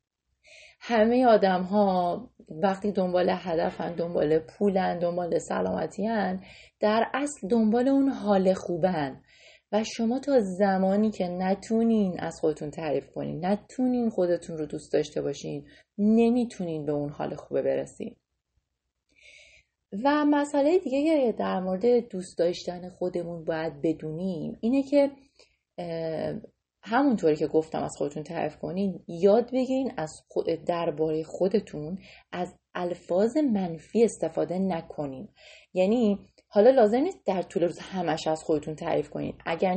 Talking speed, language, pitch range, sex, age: 120 wpm, Persian, 170-225 Hz, female, 30-49